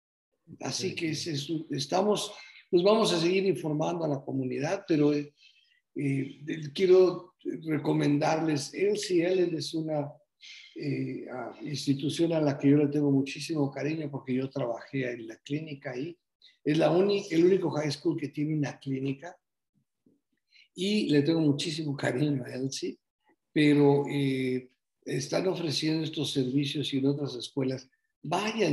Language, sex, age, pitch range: Spanish, male, 50-69, 140-185 Hz